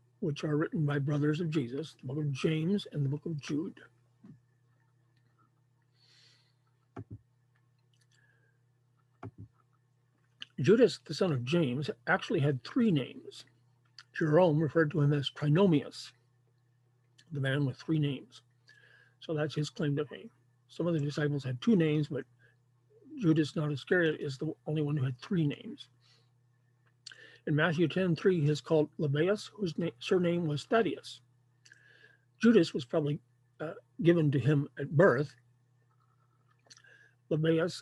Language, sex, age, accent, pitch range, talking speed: English, male, 50-69, American, 125-155 Hz, 130 wpm